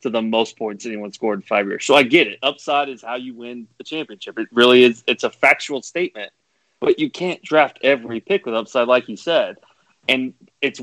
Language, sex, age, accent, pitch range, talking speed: English, male, 20-39, American, 120-160 Hz, 220 wpm